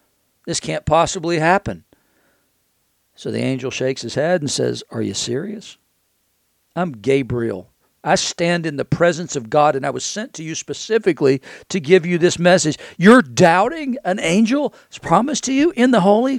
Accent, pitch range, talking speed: American, 125-180 Hz, 170 wpm